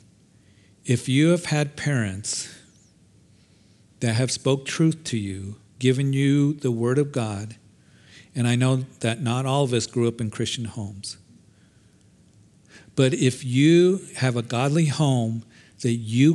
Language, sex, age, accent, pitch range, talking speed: English, male, 50-69, American, 115-155 Hz, 145 wpm